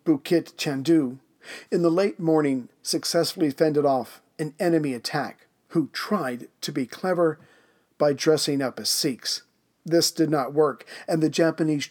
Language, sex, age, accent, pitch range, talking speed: English, male, 50-69, American, 135-165 Hz, 145 wpm